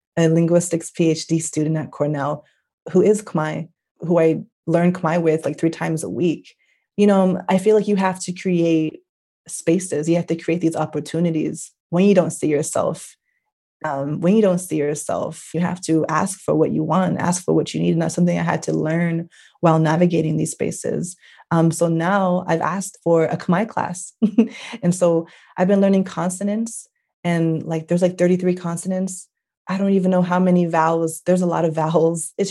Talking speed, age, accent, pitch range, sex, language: 190 wpm, 20-39, American, 160-190 Hz, female, English